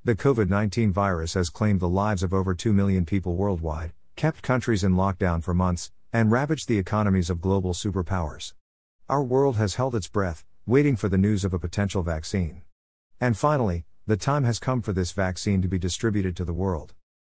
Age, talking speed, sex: 50-69, 190 wpm, male